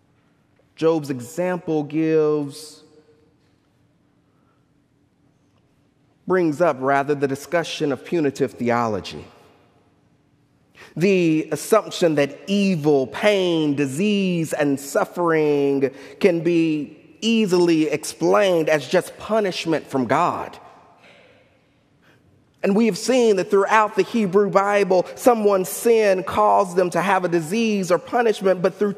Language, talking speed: English, 100 wpm